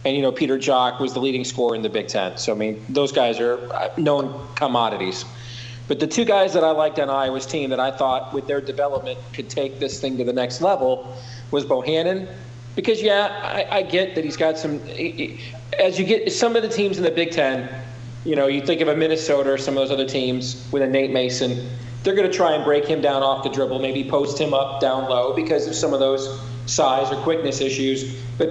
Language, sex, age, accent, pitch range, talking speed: English, male, 40-59, American, 125-160 Hz, 235 wpm